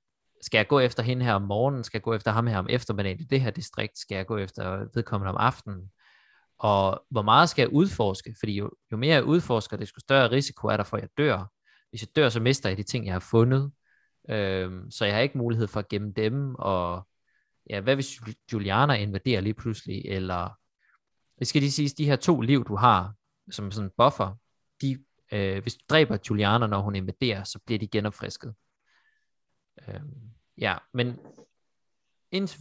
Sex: male